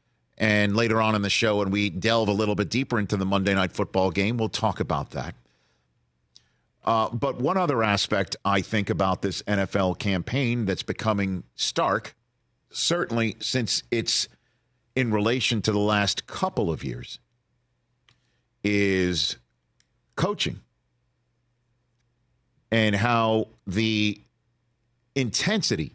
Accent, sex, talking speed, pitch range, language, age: American, male, 125 wpm, 100-120 Hz, English, 50-69